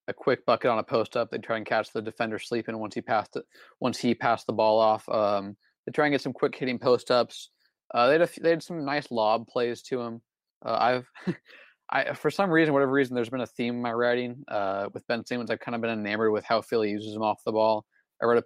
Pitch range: 110-125 Hz